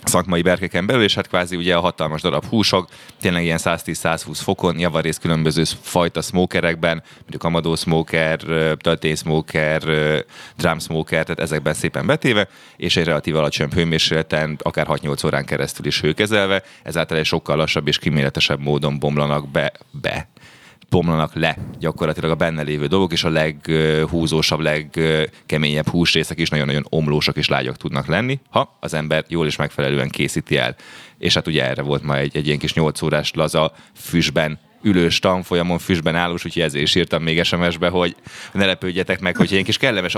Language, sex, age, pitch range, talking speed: Hungarian, male, 30-49, 80-90 Hz, 165 wpm